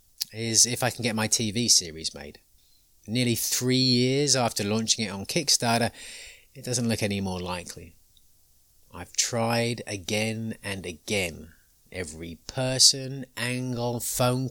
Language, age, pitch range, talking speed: English, 30-49, 105-130 Hz, 130 wpm